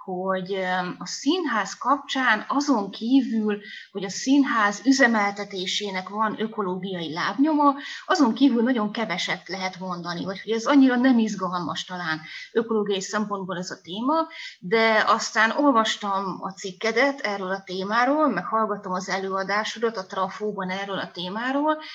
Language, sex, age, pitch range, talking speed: Hungarian, female, 30-49, 190-230 Hz, 125 wpm